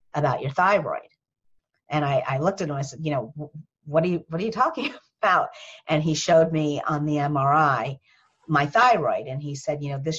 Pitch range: 135-155 Hz